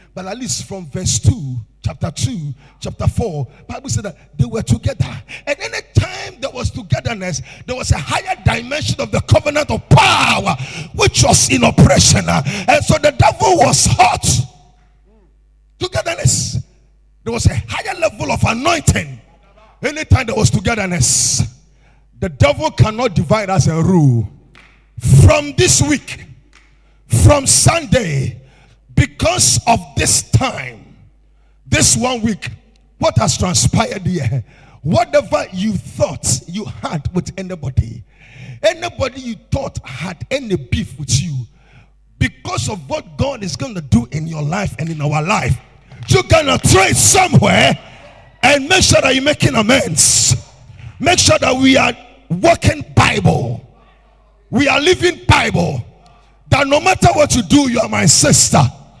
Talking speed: 145 wpm